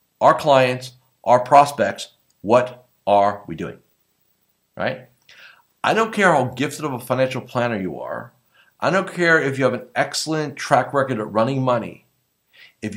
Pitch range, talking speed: 125-155 Hz, 155 wpm